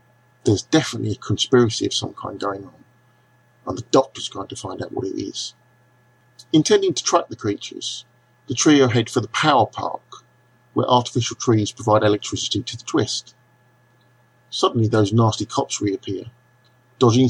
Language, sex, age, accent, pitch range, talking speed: English, male, 50-69, British, 110-125 Hz, 155 wpm